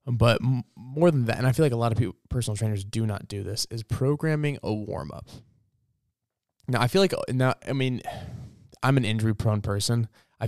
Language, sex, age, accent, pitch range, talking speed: English, male, 20-39, American, 105-125 Hz, 200 wpm